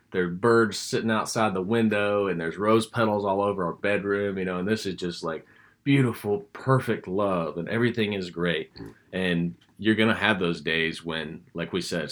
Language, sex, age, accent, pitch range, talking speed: English, male, 30-49, American, 80-100 Hz, 200 wpm